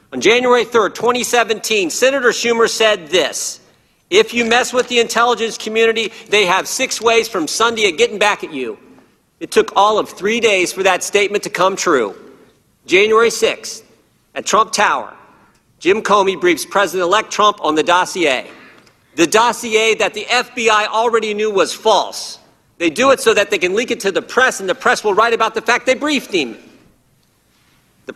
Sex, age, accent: male, 50-69, American